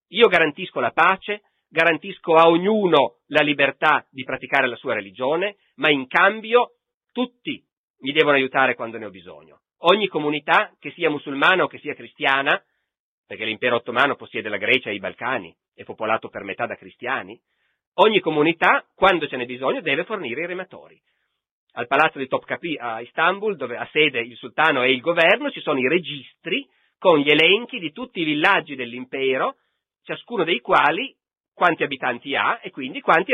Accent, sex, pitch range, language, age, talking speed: native, male, 130-190 Hz, Italian, 40-59, 170 wpm